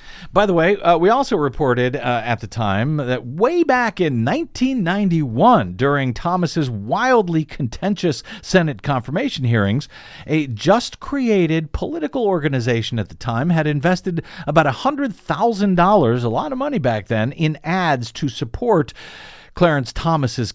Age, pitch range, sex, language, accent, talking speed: 50-69, 120-180 Hz, male, English, American, 135 wpm